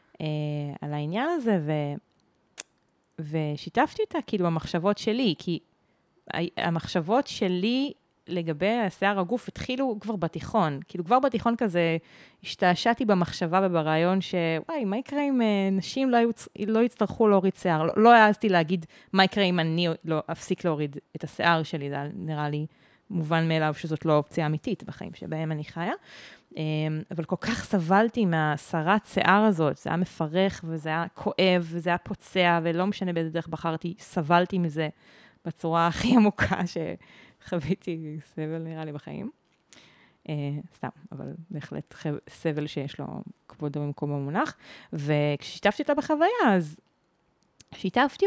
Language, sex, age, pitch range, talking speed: Hebrew, female, 30-49, 160-200 Hz, 140 wpm